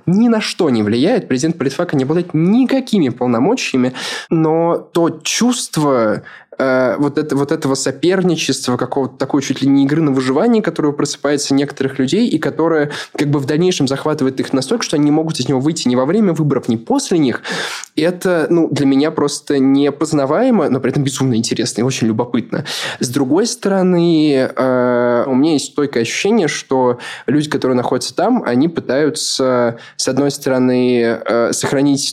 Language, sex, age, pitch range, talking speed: Russian, male, 20-39, 125-155 Hz, 165 wpm